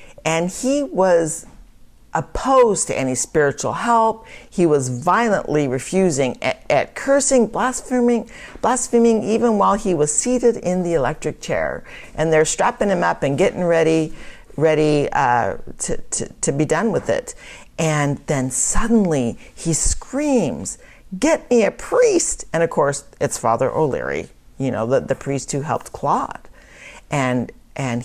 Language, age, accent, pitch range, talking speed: English, 50-69, American, 135-200 Hz, 145 wpm